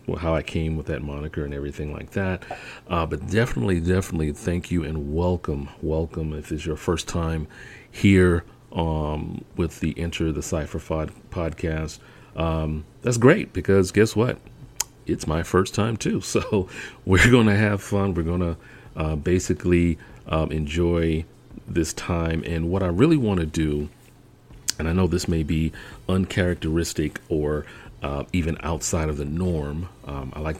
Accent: American